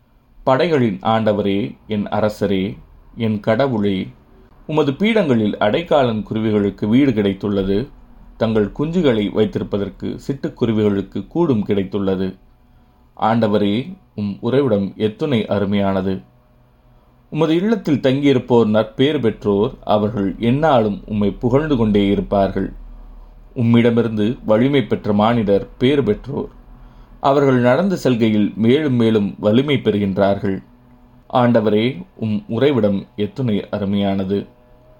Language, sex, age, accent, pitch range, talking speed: Tamil, male, 30-49, native, 100-125 Hz, 90 wpm